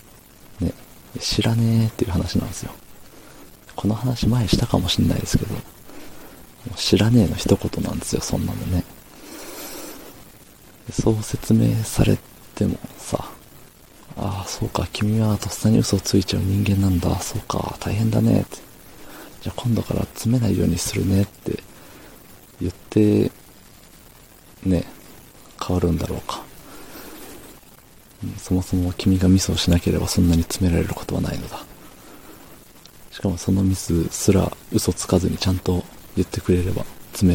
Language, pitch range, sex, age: Japanese, 90-110 Hz, male, 40-59